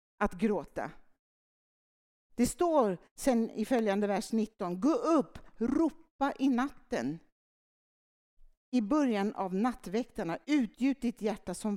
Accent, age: native, 60-79